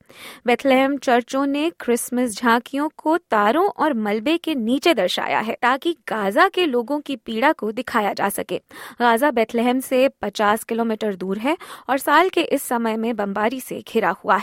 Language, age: Hindi, 20-39